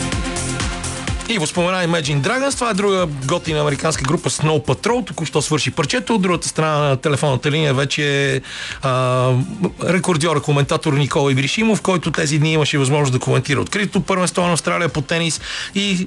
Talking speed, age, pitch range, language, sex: 155 wpm, 40-59, 130-170 Hz, Bulgarian, male